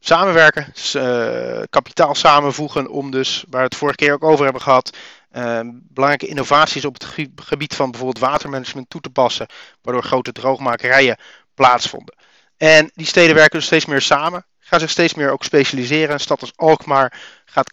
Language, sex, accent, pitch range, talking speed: Dutch, male, Dutch, 130-150 Hz, 175 wpm